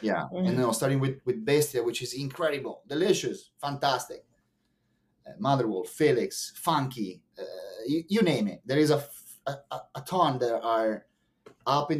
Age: 30-49